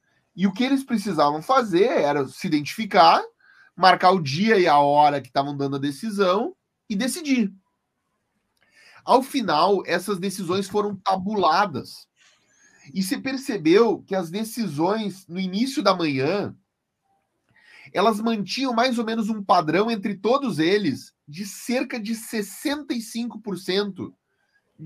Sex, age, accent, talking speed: male, 30-49, Brazilian, 125 wpm